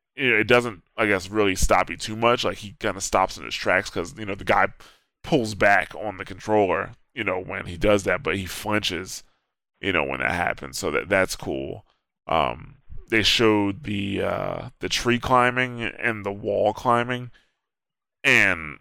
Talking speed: 185 wpm